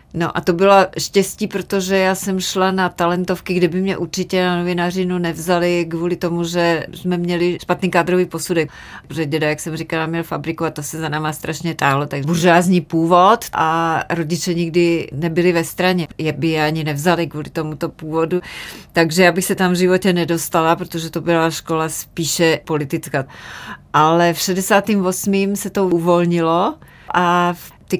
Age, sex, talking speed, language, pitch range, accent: 30-49, female, 165 wpm, Czech, 160-185 Hz, native